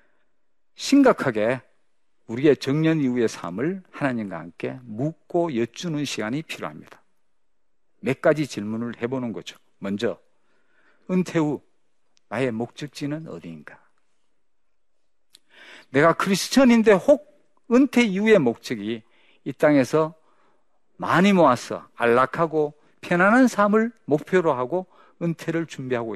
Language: Korean